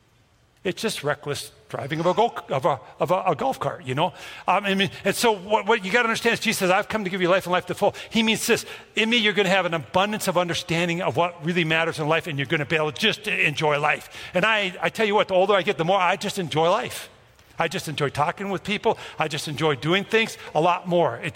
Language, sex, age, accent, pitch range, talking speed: English, male, 50-69, American, 150-195 Hz, 285 wpm